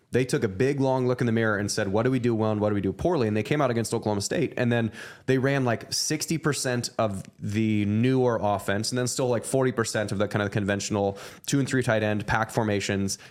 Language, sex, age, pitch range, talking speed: English, male, 20-39, 105-125 Hz, 265 wpm